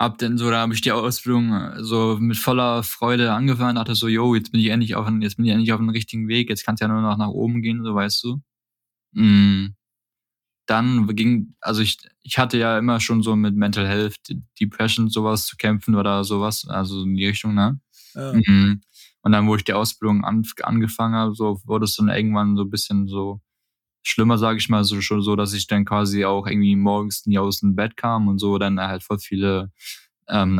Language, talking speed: German, 210 wpm